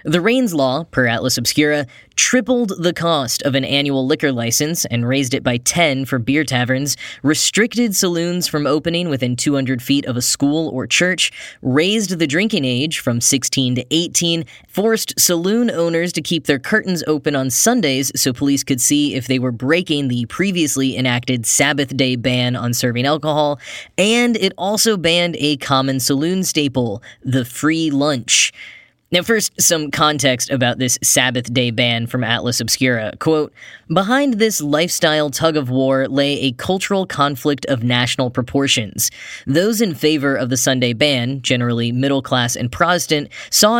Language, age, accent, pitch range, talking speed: English, 10-29, American, 130-165 Hz, 165 wpm